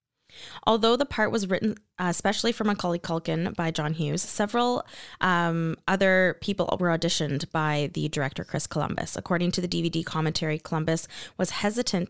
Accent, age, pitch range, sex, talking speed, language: American, 20-39, 160-205 Hz, female, 155 wpm, English